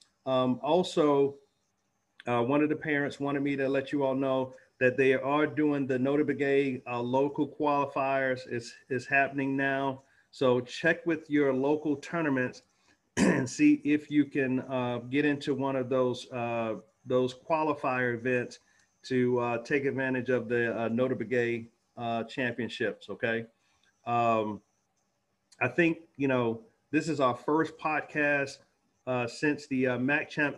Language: English